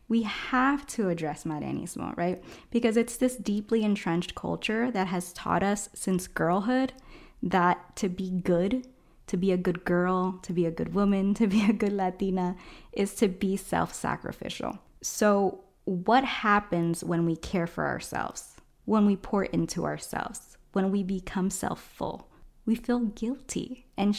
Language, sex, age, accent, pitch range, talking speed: English, female, 20-39, American, 180-225 Hz, 155 wpm